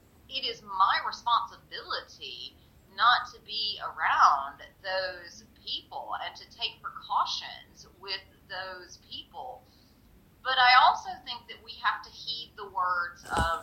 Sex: female